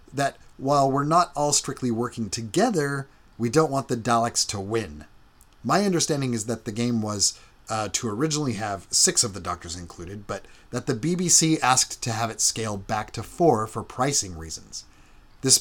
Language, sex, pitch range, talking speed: English, male, 115-150 Hz, 180 wpm